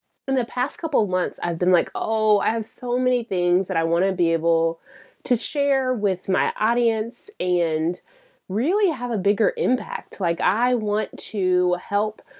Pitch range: 185-260 Hz